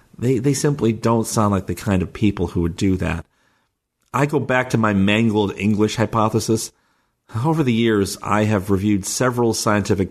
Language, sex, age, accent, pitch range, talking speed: English, male, 40-59, American, 95-110 Hz, 180 wpm